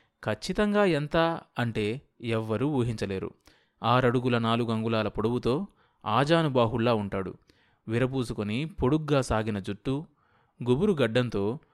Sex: male